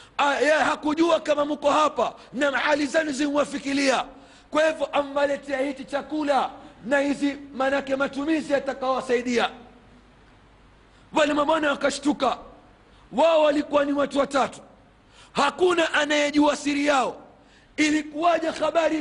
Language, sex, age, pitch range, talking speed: Swahili, male, 40-59, 270-295 Hz, 105 wpm